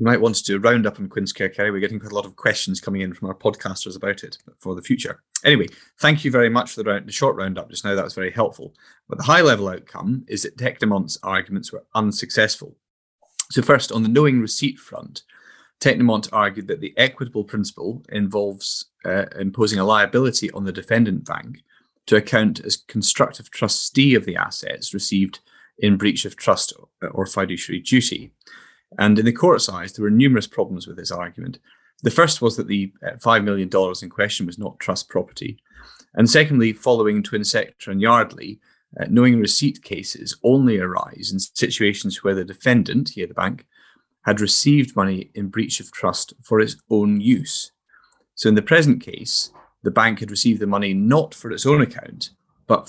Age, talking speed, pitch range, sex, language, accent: 30-49, 185 wpm, 100-120 Hz, male, English, British